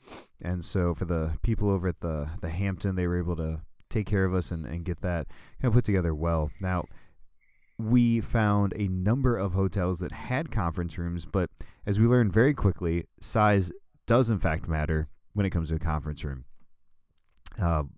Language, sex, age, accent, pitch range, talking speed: English, male, 30-49, American, 80-100 Hz, 195 wpm